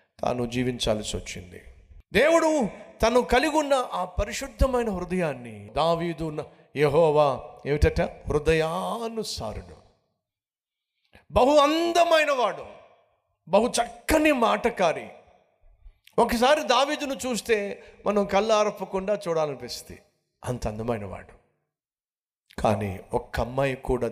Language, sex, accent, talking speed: Telugu, male, native, 50 wpm